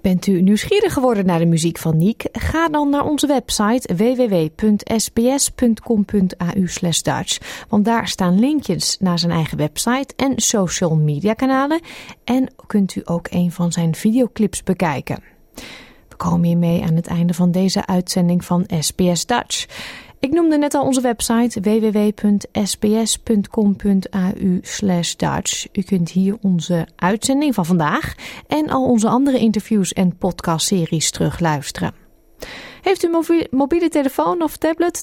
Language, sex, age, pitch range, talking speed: Dutch, female, 30-49, 175-265 Hz, 135 wpm